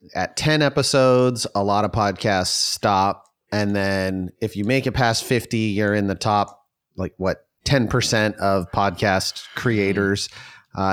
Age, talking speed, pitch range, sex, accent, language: 30-49, 150 wpm, 100-125 Hz, male, American, English